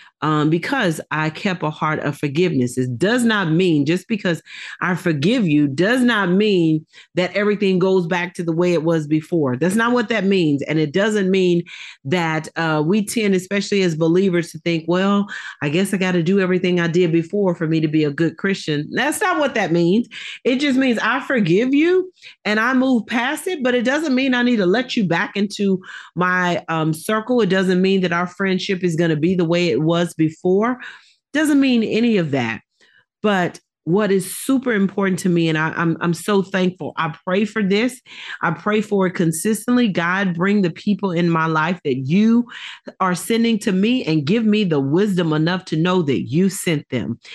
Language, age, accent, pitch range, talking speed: English, 40-59, American, 170-220 Hz, 205 wpm